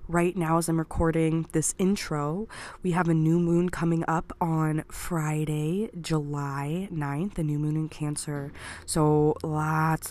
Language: English